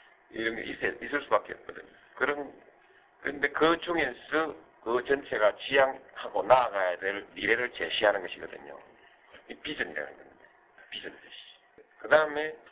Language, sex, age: Korean, male, 50-69